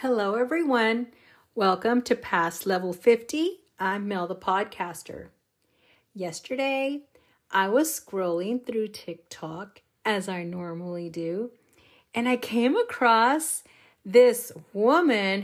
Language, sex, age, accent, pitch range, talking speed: English, female, 40-59, American, 195-245 Hz, 105 wpm